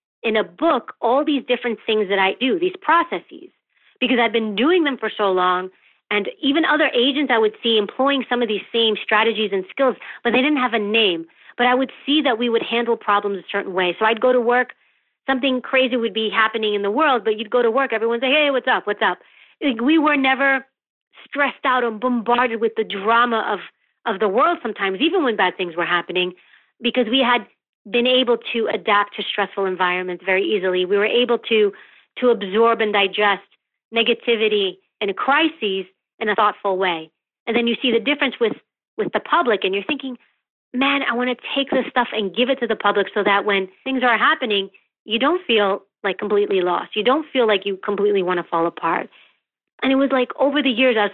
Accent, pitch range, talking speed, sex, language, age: American, 205-260 Hz, 215 wpm, female, English, 30-49